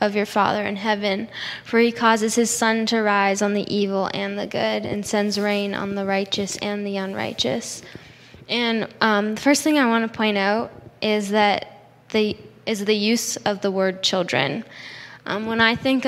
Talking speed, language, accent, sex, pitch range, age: 185 wpm, English, American, female, 200-225 Hz, 10-29